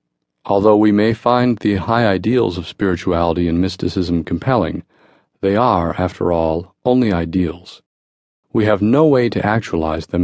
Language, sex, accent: English, male, American